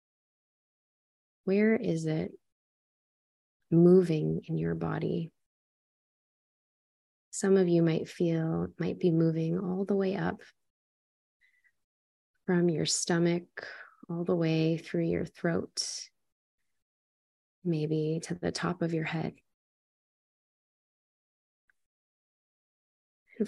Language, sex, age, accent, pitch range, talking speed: English, female, 20-39, American, 160-185 Hz, 90 wpm